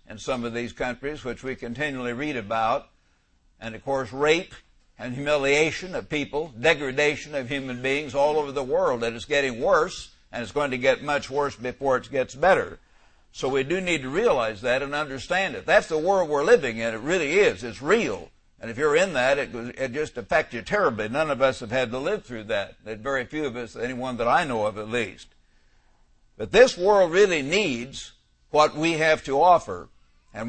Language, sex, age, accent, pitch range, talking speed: English, male, 60-79, American, 120-160 Hz, 205 wpm